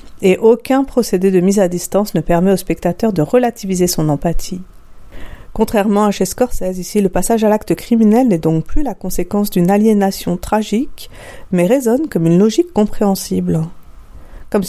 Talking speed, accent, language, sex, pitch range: 165 wpm, French, French, female, 175-210 Hz